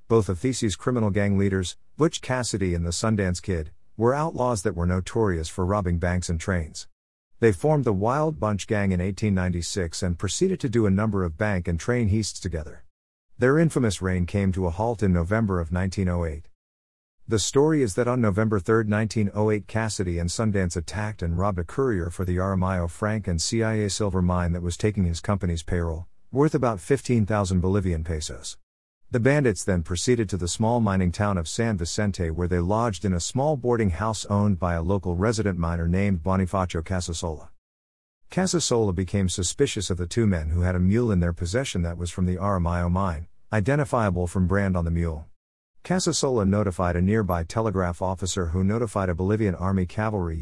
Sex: male